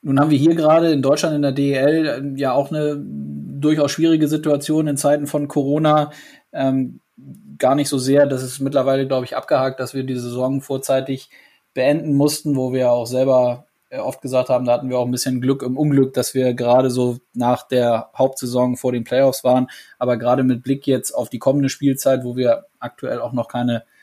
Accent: German